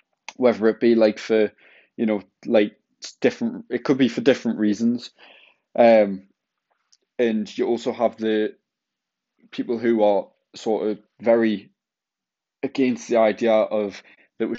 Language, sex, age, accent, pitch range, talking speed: English, male, 20-39, British, 105-120 Hz, 135 wpm